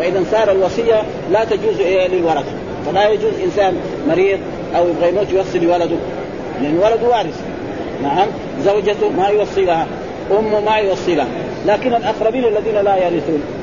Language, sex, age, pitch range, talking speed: Arabic, male, 40-59, 195-250 Hz, 140 wpm